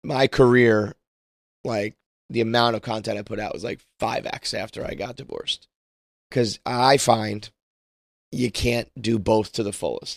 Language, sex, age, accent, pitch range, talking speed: English, male, 20-39, American, 110-125 Hz, 165 wpm